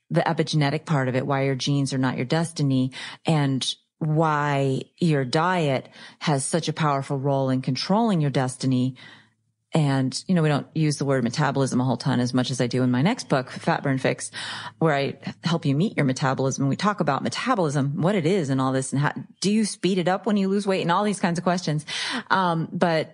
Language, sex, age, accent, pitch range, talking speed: English, female, 30-49, American, 135-170 Hz, 220 wpm